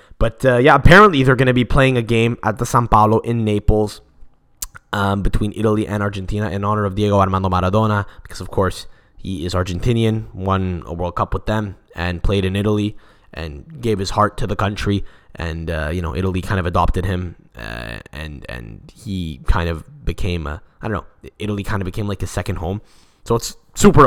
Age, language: 10-29, English